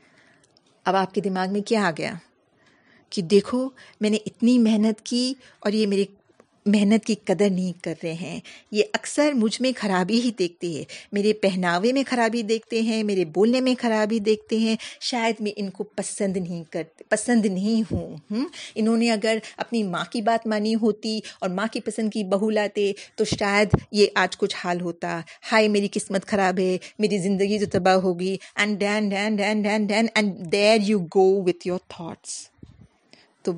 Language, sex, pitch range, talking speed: Urdu, female, 195-230 Hz, 165 wpm